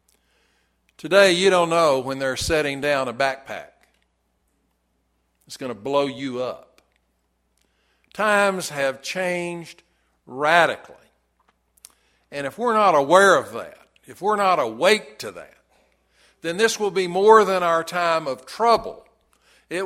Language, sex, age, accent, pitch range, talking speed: English, male, 60-79, American, 135-195 Hz, 135 wpm